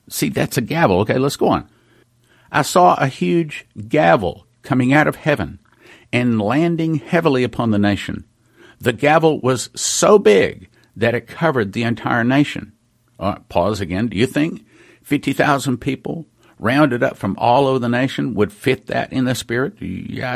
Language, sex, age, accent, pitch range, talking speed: English, male, 50-69, American, 105-145 Hz, 160 wpm